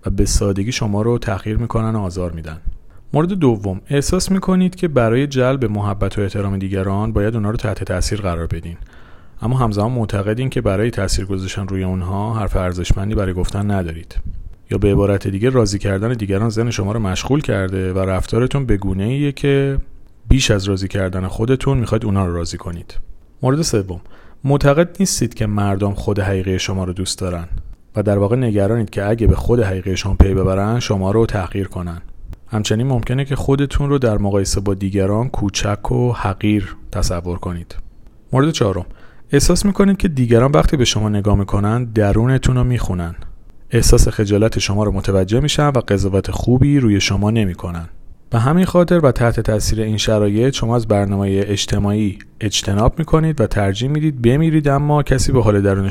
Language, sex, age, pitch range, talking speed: Persian, male, 40-59, 95-120 Hz, 165 wpm